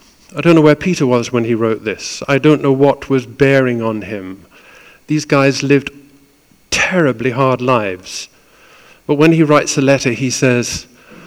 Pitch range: 120-155 Hz